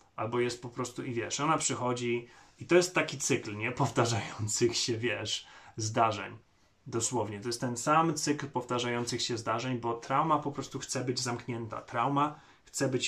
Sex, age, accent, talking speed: male, 30-49, native, 165 wpm